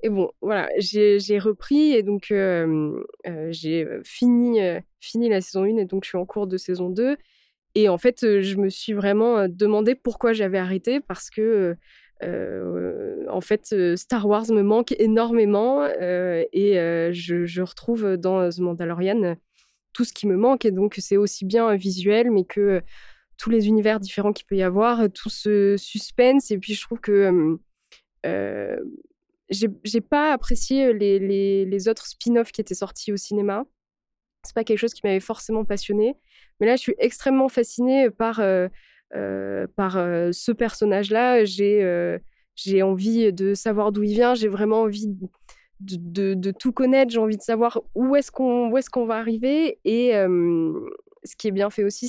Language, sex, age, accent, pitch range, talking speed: French, female, 20-39, French, 195-235 Hz, 190 wpm